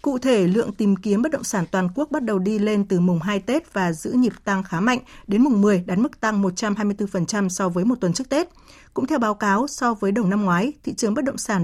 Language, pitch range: Vietnamese, 185-230 Hz